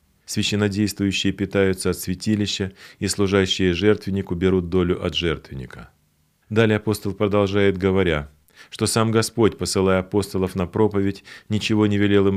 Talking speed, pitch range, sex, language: 125 wpm, 85-100 Hz, male, Russian